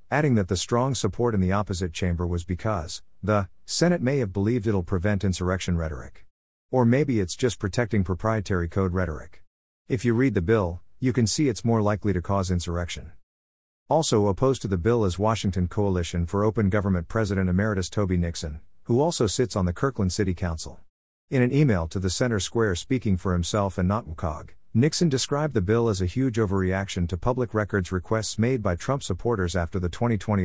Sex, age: male, 50-69